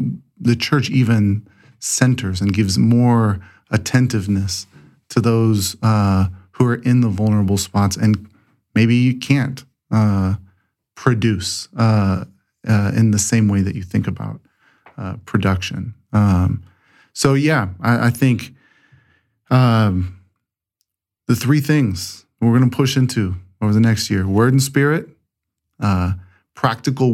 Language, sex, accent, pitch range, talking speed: English, male, American, 105-125 Hz, 130 wpm